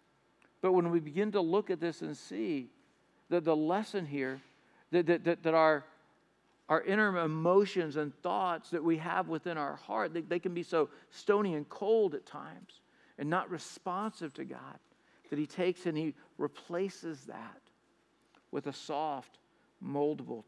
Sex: male